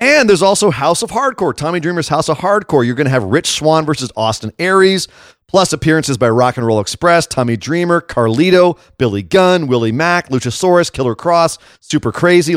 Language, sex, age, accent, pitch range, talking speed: English, male, 30-49, American, 135-185 Hz, 185 wpm